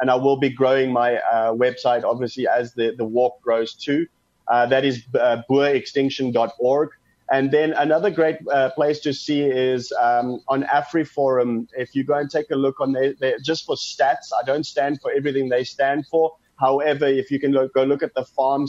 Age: 30-49